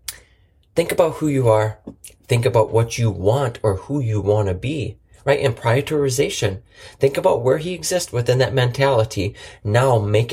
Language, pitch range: English, 105-140 Hz